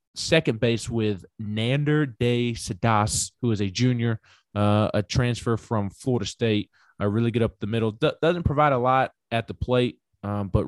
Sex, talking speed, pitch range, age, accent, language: male, 180 wpm, 105-120 Hz, 20-39, American, English